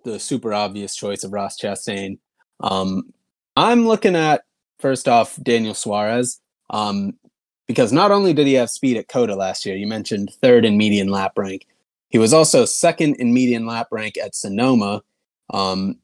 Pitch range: 105-130 Hz